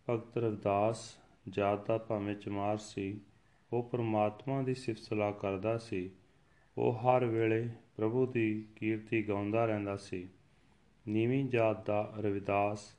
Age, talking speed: 30-49, 120 wpm